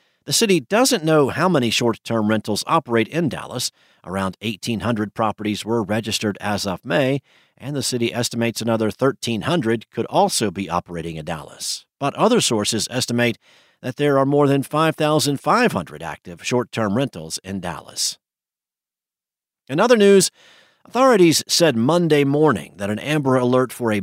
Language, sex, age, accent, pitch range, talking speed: English, male, 50-69, American, 105-135 Hz, 145 wpm